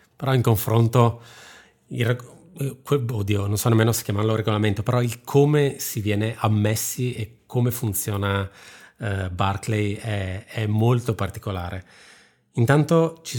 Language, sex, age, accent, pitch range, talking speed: Italian, male, 30-49, native, 100-125 Hz, 125 wpm